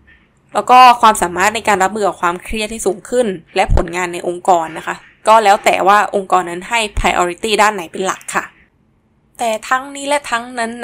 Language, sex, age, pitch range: Thai, female, 20-39, 190-235 Hz